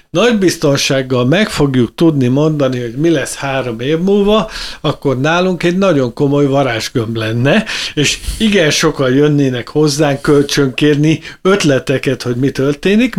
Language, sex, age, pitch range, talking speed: Hungarian, male, 50-69, 125-165 Hz, 130 wpm